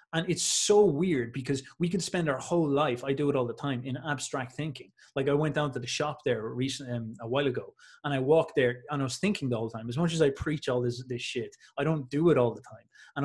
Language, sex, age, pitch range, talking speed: English, male, 20-39, 125-145 Hz, 265 wpm